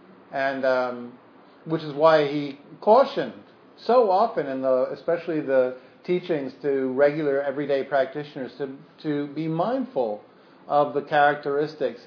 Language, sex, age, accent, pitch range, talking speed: English, male, 50-69, American, 130-150 Hz, 125 wpm